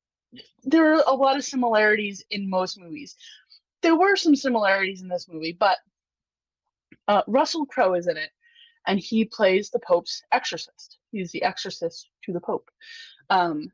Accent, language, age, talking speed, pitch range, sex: American, English, 20-39, 155 wpm, 185-245 Hz, female